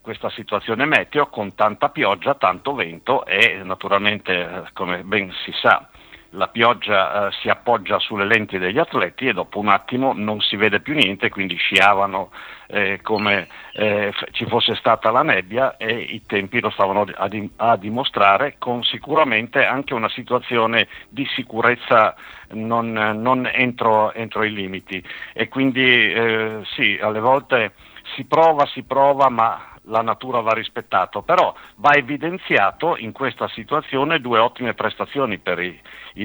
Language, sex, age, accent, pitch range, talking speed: Italian, male, 60-79, native, 105-130 Hz, 145 wpm